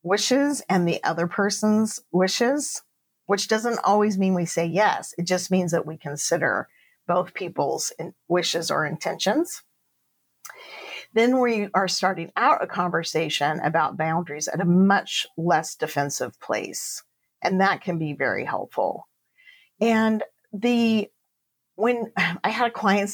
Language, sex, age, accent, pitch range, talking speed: English, female, 40-59, American, 170-230 Hz, 135 wpm